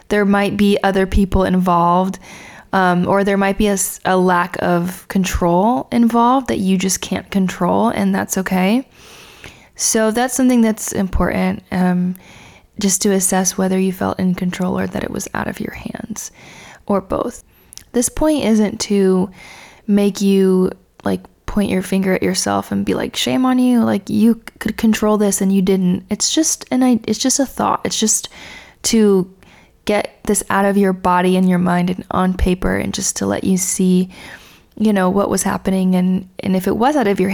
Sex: female